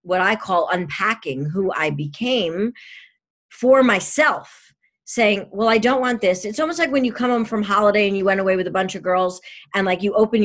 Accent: American